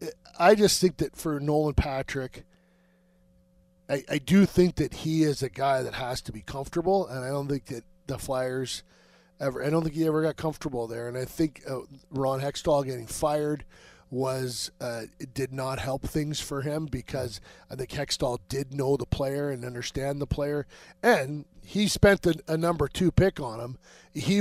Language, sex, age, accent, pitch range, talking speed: English, male, 40-59, American, 125-160 Hz, 185 wpm